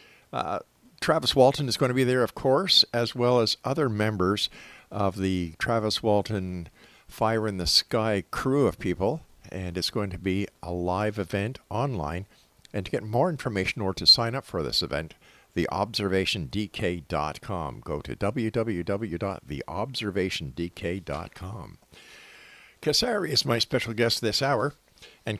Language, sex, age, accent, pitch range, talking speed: English, male, 50-69, American, 95-120 Hz, 140 wpm